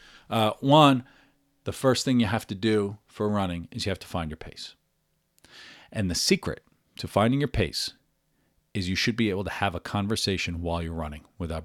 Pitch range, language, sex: 95-125 Hz, English, male